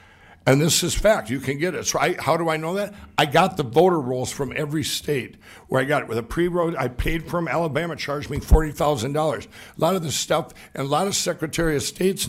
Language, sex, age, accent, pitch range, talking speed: English, male, 60-79, American, 130-160 Hz, 240 wpm